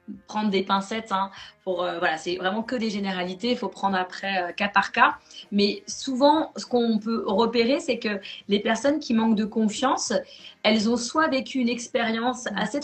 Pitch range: 200-255 Hz